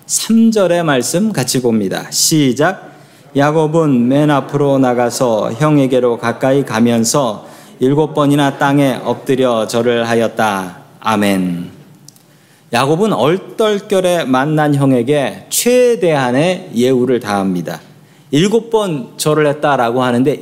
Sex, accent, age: male, native, 40-59